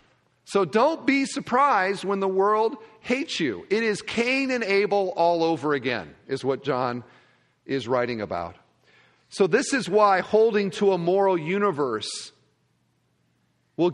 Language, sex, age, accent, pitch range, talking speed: English, male, 40-59, American, 145-215 Hz, 140 wpm